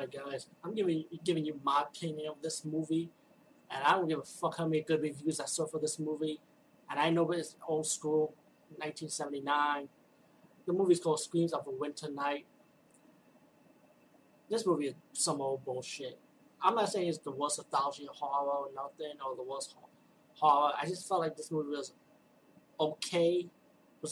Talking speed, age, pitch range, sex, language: 170 wpm, 30-49, 145-170 Hz, male, English